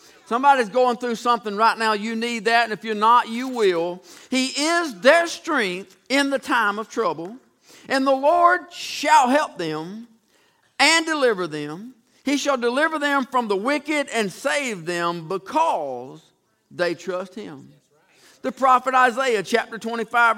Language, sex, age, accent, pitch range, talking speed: English, male, 50-69, American, 220-270 Hz, 155 wpm